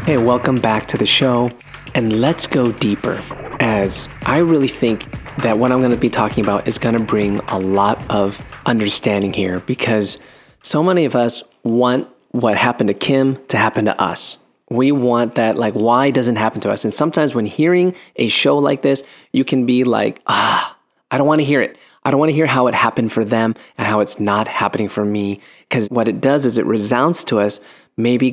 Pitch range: 110-145 Hz